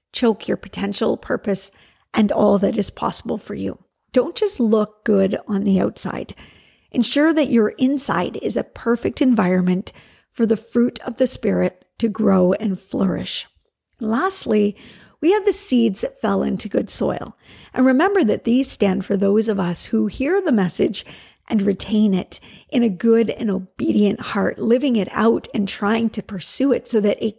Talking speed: 175 wpm